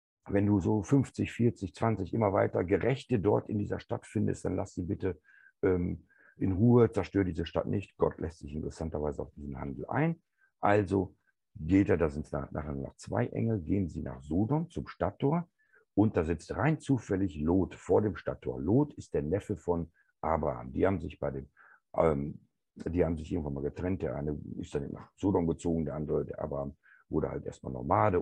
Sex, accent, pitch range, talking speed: male, German, 80-110 Hz, 195 wpm